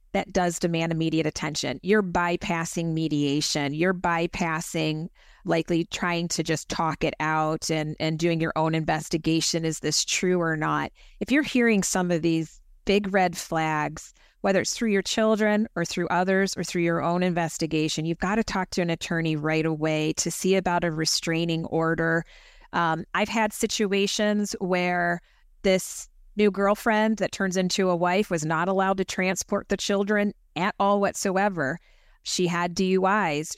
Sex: female